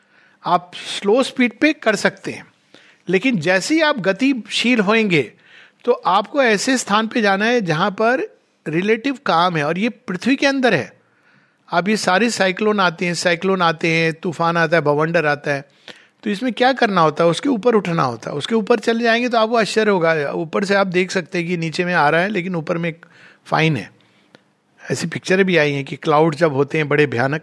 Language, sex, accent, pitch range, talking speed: Hindi, male, native, 170-235 Hz, 205 wpm